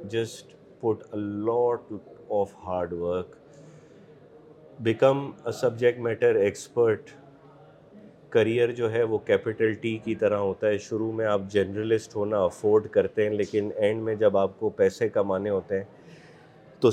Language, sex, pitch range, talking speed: Urdu, male, 105-130 Hz, 140 wpm